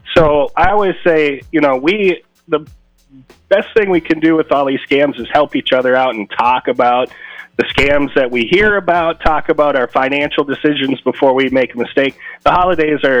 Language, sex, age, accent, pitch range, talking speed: English, male, 30-49, American, 120-145 Hz, 200 wpm